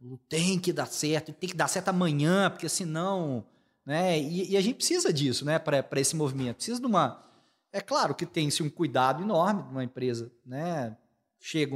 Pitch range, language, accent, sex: 140-200 Hz, Portuguese, Brazilian, male